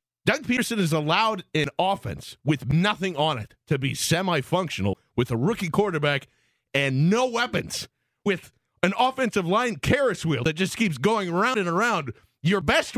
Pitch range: 145-220 Hz